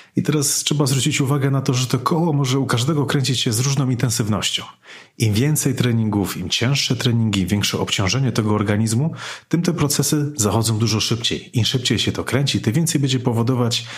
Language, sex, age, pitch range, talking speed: Polish, male, 30-49, 100-130 Hz, 185 wpm